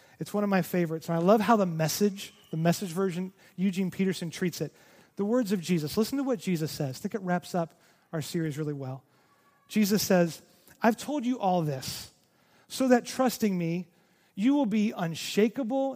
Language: English